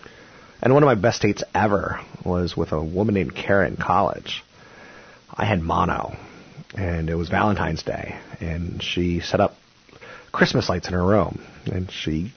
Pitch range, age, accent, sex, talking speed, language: 90-110 Hz, 30-49, American, male, 165 wpm, English